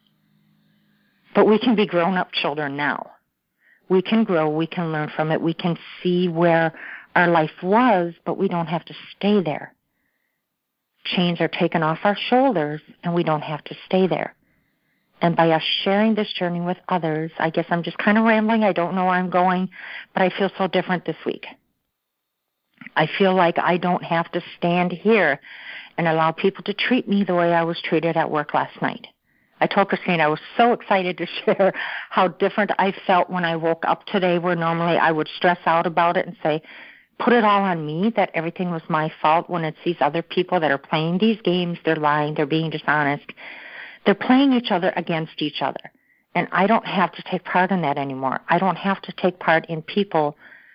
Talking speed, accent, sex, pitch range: 205 wpm, American, female, 160-195 Hz